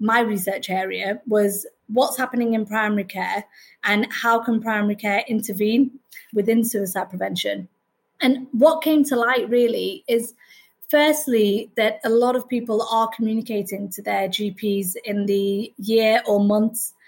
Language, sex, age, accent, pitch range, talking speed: English, female, 20-39, British, 205-240 Hz, 145 wpm